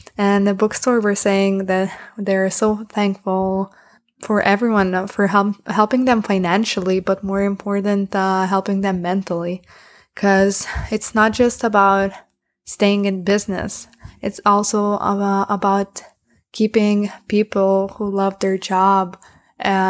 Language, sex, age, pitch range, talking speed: English, female, 20-39, 190-210 Hz, 125 wpm